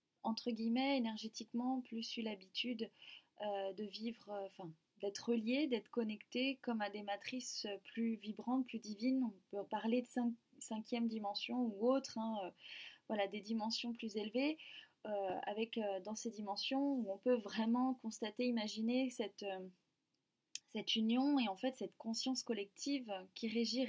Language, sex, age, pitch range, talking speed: French, female, 20-39, 210-255 Hz, 160 wpm